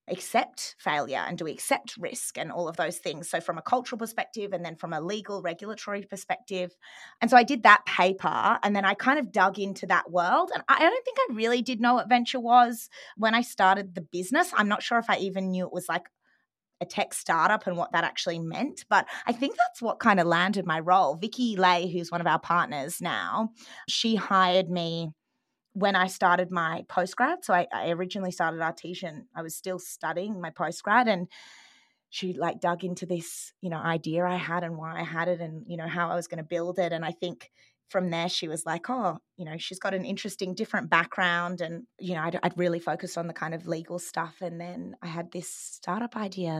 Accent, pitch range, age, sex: Australian, 170-220 Hz, 20-39, female